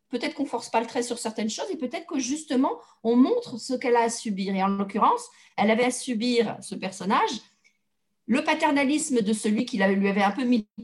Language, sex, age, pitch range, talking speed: French, female, 50-69, 195-255 Hz, 225 wpm